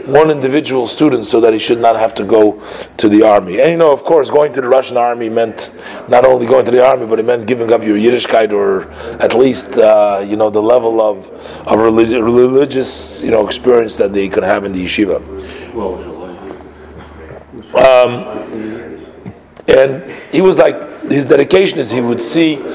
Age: 40-59